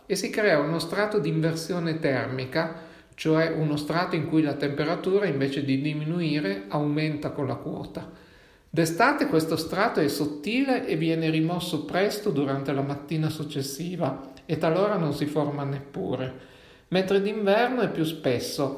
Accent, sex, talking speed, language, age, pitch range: native, male, 145 wpm, Italian, 50-69, 150-190 Hz